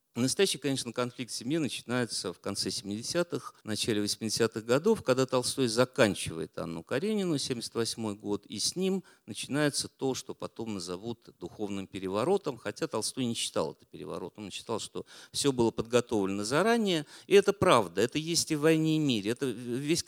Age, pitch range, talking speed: 50-69, 100-140 Hz, 160 wpm